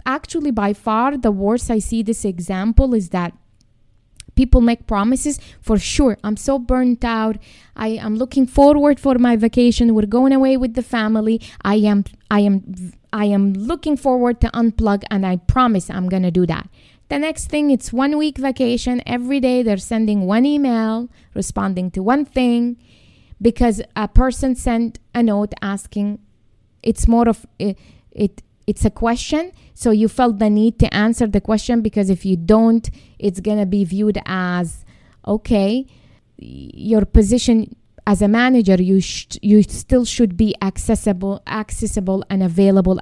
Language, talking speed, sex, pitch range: English, 165 wpm, female, 200-245 Hz